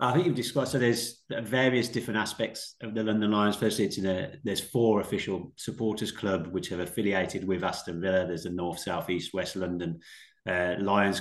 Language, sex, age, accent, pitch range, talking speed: English, male, 30-49, British, 95-105 Hz, 200 wpm